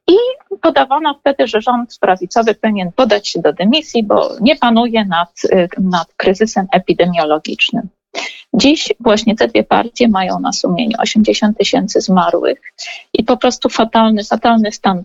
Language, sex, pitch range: Polish, female, 185-260 Hz